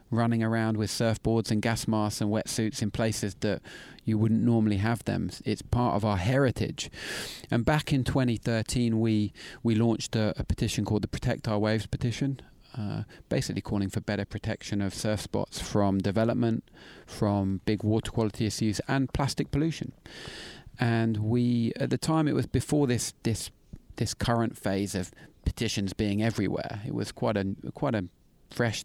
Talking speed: 170 wpm